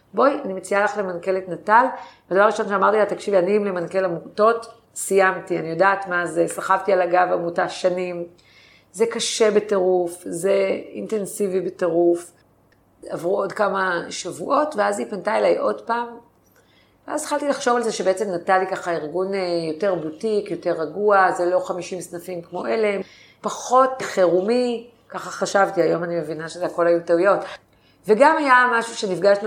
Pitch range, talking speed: 170-200 Hz, 155 wpm